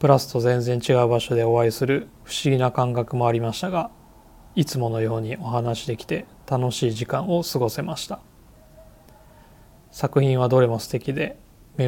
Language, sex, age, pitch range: Japanese, male, 20-39, 115-135 Hz